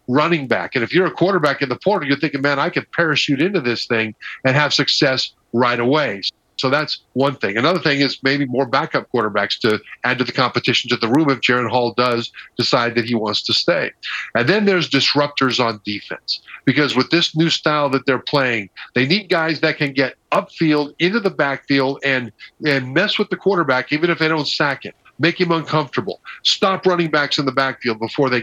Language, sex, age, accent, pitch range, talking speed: English, male, 50-69, American, 125-160 Hz, 210 wpm